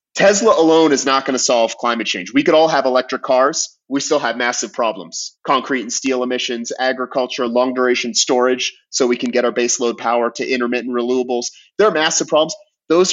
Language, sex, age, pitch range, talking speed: English, male, 30-49, 125-155 Hz, 195 wpm